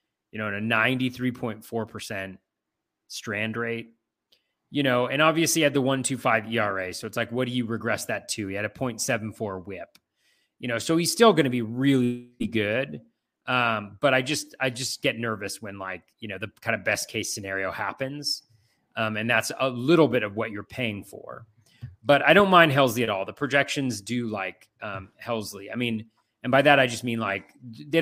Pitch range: 105-125 Hz